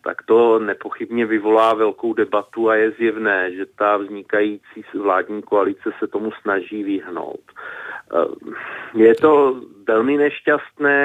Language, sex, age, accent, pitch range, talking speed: Czech, male, 40-59, native, 105-120 Hz, 120 wpm